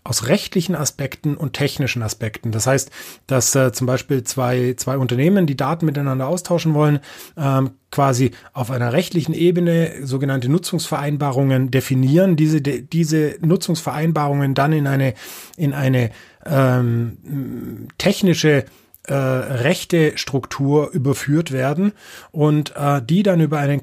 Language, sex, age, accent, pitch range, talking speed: German, male, 30-49, German, 130-150 Hz, 125 wpm